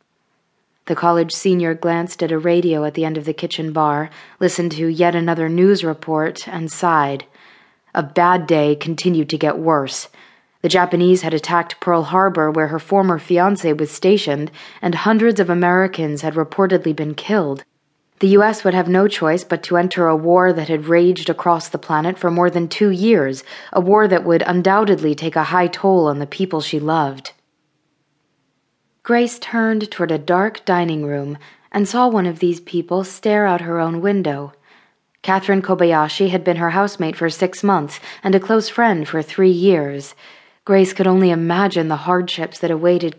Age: 20-39